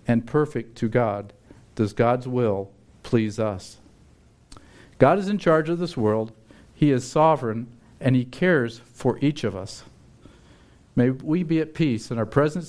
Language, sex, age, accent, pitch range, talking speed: English, male, 50-69, American, 110-140 Hz, 160 wpm